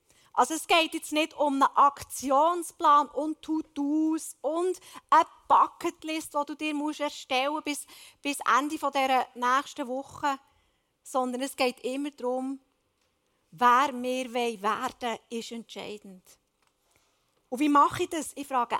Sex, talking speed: female, 130 wpm